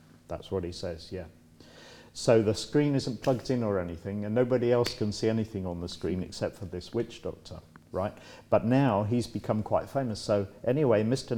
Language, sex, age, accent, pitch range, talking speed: English, male, 50-69, British, 90-115 Hz, 195 wpm